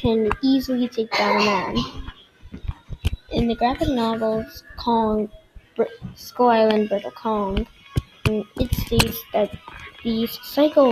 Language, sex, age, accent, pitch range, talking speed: English, female, 10-29, American, 220-250 Hz, 110 wpm